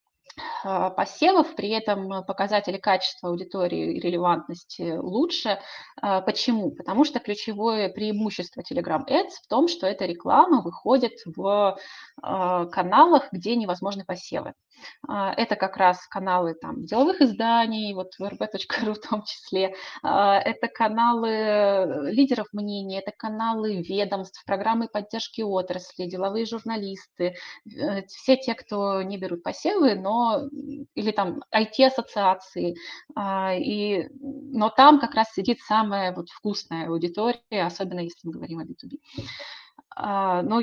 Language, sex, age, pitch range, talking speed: Russian, female, 20-39, 180-235 Hz, 110 wpm